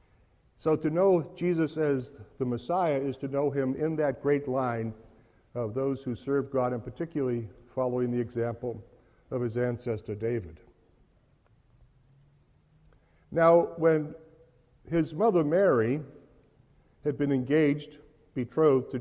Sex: male